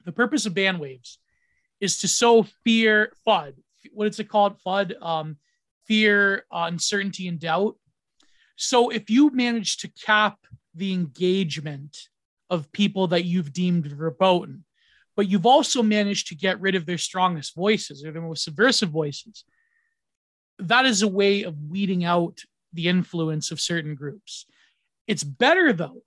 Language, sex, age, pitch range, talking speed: English, male, 30-49, 170-215 Hz, 145 wpm